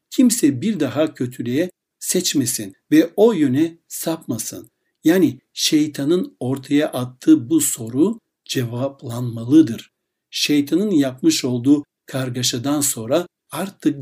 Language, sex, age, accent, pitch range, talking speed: Turkish, male, 60-79, native, 130-185 Hz, 95 wpm